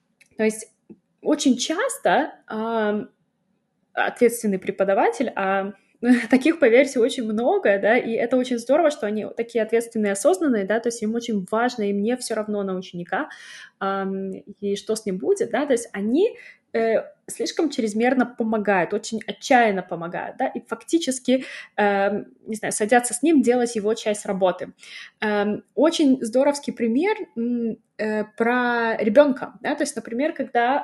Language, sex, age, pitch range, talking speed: Russian, female, 20-39, 205-250 Hz, 145 wpm